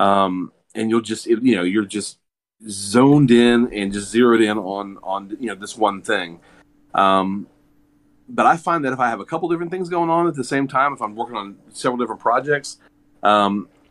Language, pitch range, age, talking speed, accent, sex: English, 90-120 Hz, 30-49, 205 wpm, American, male